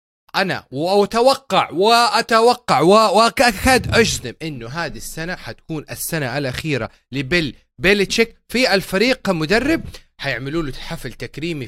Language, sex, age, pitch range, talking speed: Arabic, male, 30-49, 130-200 Hz, 105 wpm